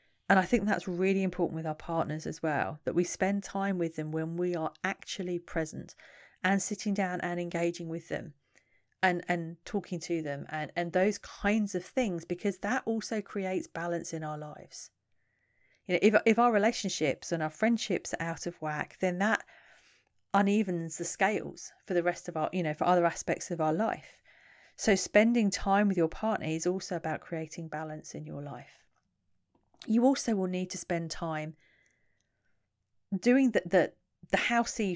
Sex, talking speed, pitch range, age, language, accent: female, 180 wpm, 170-210 Hz, 40-59, English, British